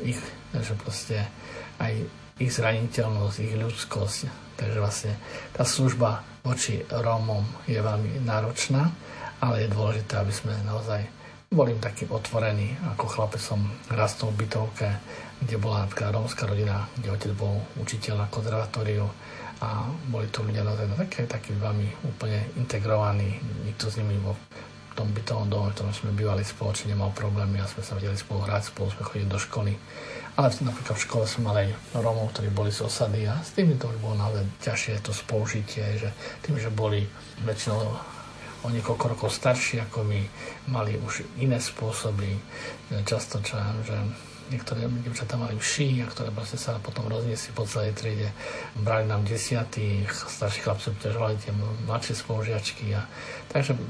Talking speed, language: 160 wpm, Slovak